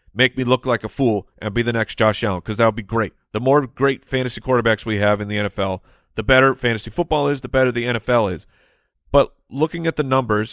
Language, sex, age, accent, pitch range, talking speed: English, male, 30-49, American, 110-135 Hz, 240 wpm